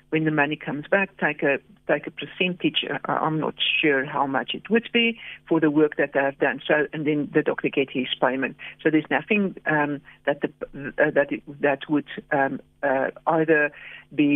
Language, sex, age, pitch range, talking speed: English, female, 60-79, 150-180 Hz, 200 wpm